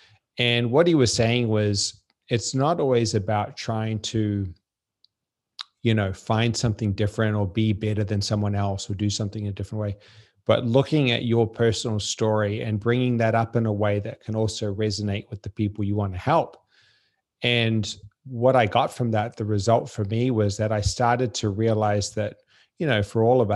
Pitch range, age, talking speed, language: 105-120 Hz, 30-49, 190 wpm, English